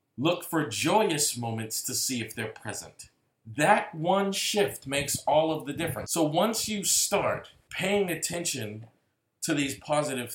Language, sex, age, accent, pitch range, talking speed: English, male, 40-59, American, 120-180 Hz, 150 wpm